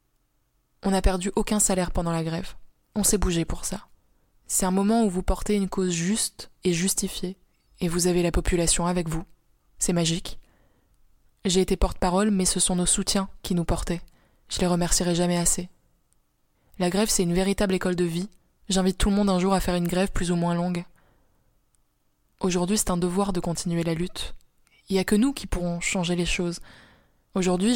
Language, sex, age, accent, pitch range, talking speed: French, female, 20-39, French, 175-195 Hz, 195 wpm